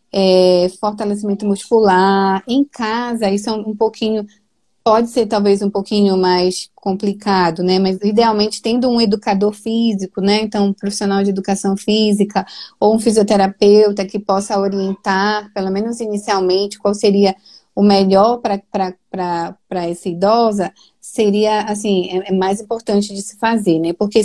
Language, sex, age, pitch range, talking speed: Portuguese, female, 20-39, 190-225 Hz, 140 wpm